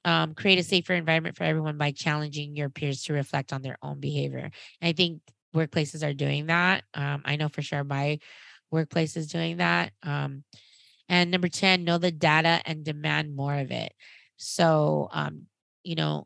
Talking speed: 185 wpm